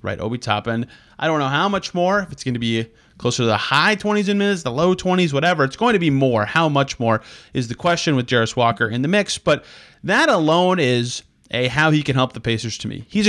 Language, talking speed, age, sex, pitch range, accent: English, 255 wpm, 30-49, male, 120-165 Hz, American